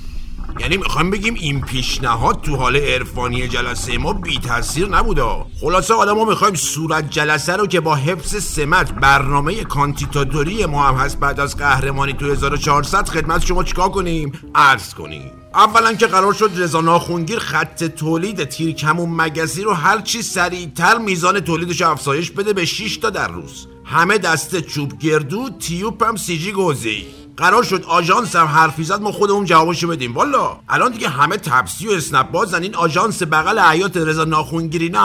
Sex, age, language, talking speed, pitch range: male, 50-69, Persian, 155 wpm, 145-190 Hz